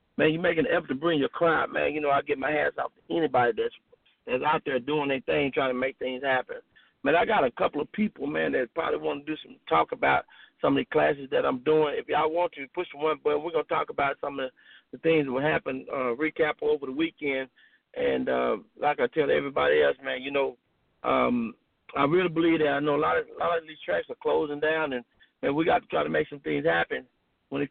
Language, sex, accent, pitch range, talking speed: English, male, American, 135-175 Hz, 260 wpm